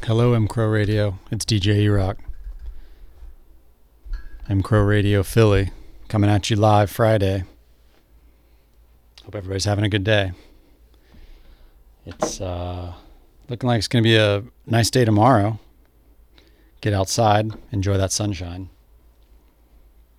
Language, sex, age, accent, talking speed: English, male, 40-59, American, 105 wpm